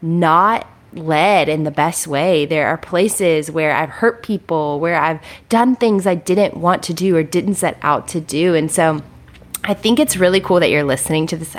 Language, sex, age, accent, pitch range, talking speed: English, female, 20-39, American, 150-190 Hz, 205 wpm